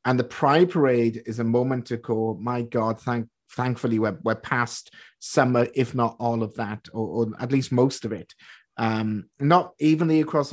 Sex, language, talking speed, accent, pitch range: male, English, 190 wpm, British, 115-160 Hz